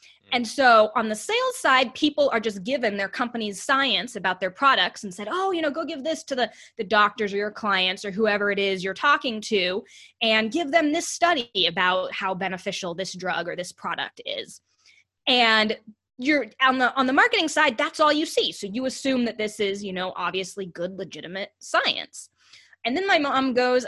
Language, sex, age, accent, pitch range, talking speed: English, female, 20-39, American, 205-300 Hz, 205 wpm